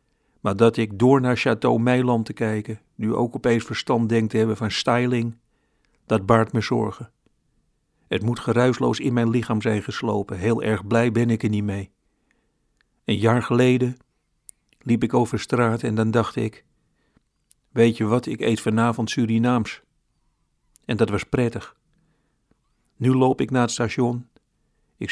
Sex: male